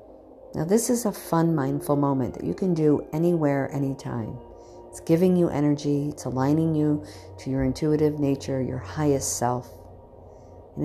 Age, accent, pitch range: 50-69, American, 135-175 Hz